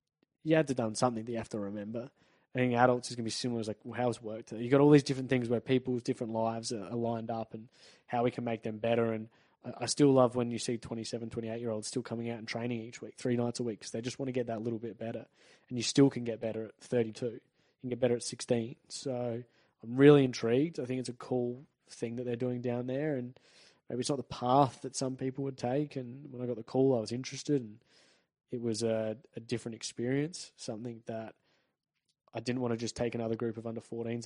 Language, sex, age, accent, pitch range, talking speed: English, male, 20-39, Australian, 115-130 Hz, 250 wpm